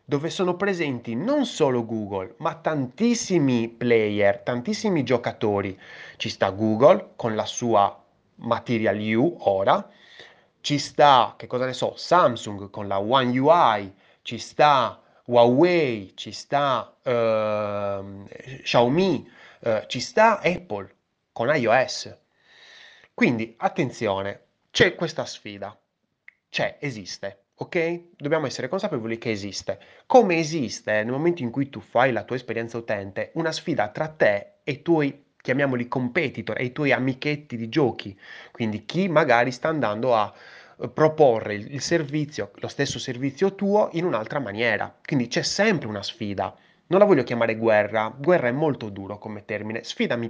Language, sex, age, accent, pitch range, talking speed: Italian, male, 30-49, native, 105-160 Hz, 140 wpm